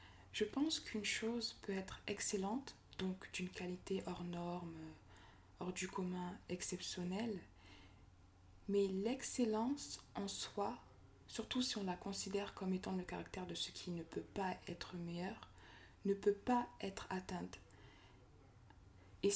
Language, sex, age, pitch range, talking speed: French, female, 20-39, 165-215 Hz, 135 wpm